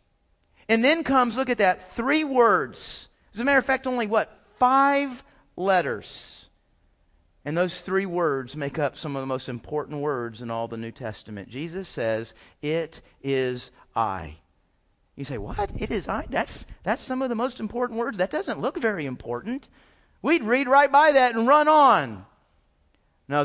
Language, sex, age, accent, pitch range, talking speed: English, male, 40-59, American, 140-230 Hz, 170 wpm